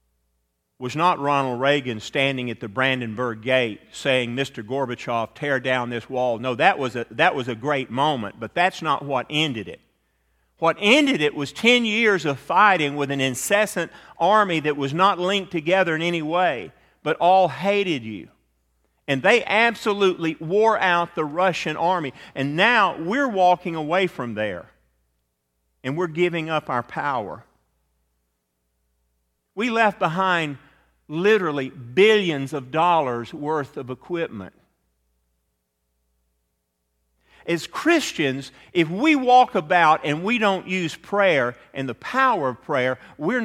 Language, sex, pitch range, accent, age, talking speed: English, male, 115-180 Hz, American, 40-59, 140 wpm